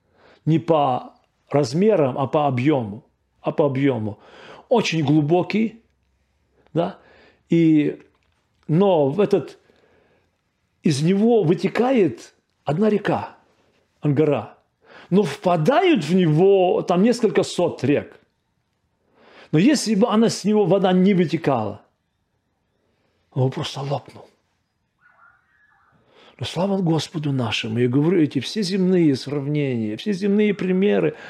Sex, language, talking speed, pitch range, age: male, Russian, 100 wpm, 135-200 Hz, 40-59